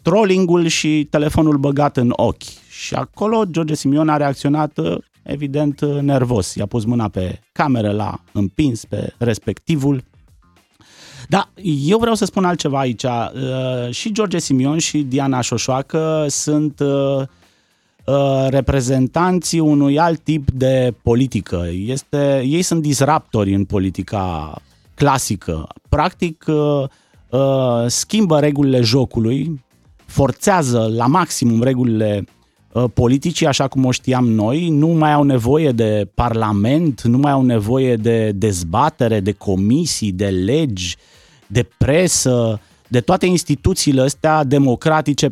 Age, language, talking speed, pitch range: 30-49, Romanian, 125 wpm, 115-150 Hz